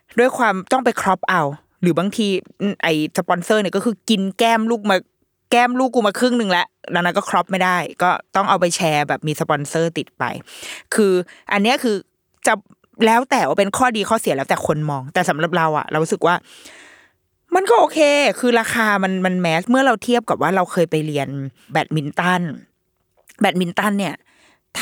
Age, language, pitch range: 20-39, Thai, 160-220 Hz